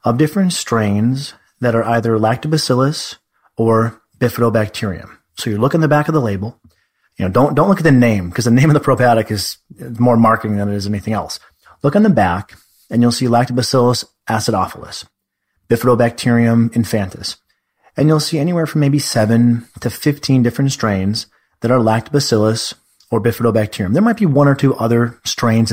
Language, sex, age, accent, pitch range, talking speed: English, male, 30-49, American, 105-135 Hz, 175 wpm